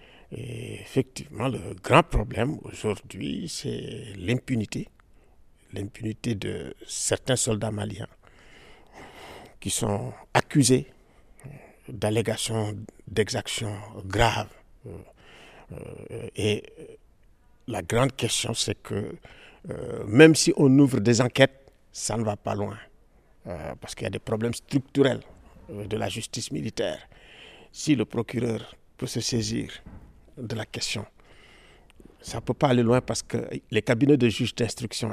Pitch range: 105-130 Hz